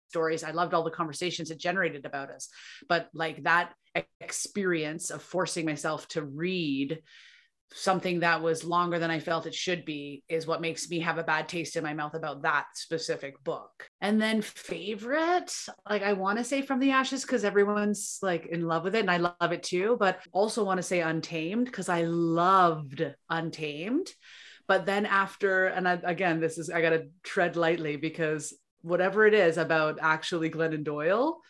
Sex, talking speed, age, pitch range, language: female, 185 wpm, 30-49, 165-195 Hz, English